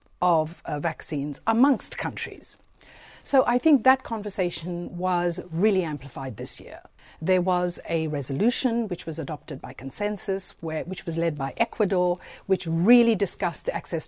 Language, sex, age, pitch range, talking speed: English, female, 50-69, 165-225 Hz, 140 wpm